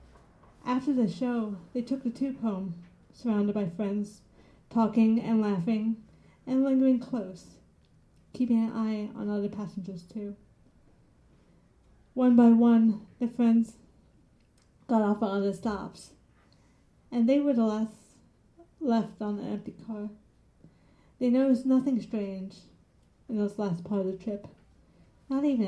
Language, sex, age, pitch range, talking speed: English, female, 40-59, 205-235 Hz, 135 wpm